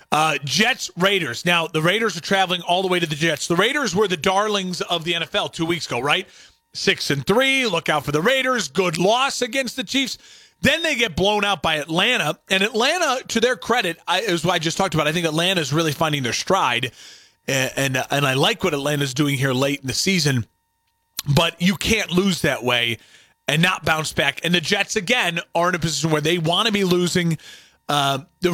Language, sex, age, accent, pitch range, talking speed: English, male, 30-49, American, 140-190 Hz, 215 wpm